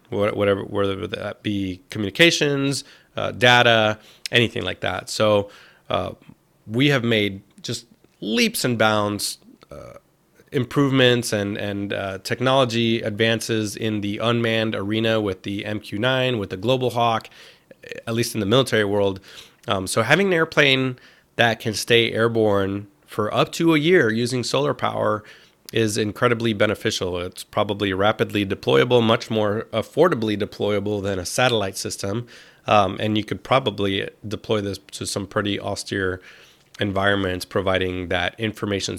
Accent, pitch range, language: American, 100-120 Hz, English